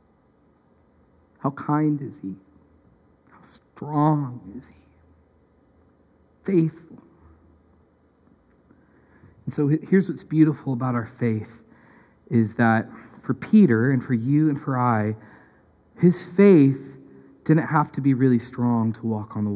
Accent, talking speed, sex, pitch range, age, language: American, 120 wpm, male, 110-145 Hz, 50-69, English